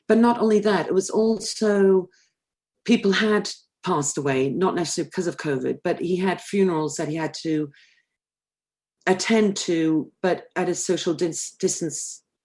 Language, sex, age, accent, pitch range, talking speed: English, female, 40-59, British, 155-200 Hz, 155 wpm